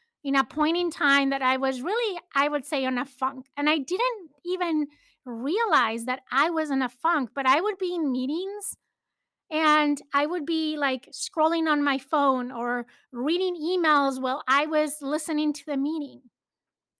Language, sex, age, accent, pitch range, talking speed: English, female, 30-49, American, 260-320 Hz, 180 wpm